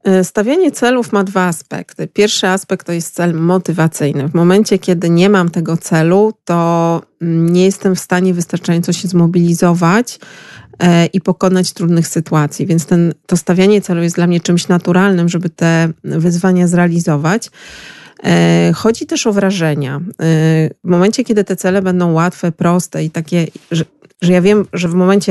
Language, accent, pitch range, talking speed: Polish, native, 170-205 Hz, 150 wpm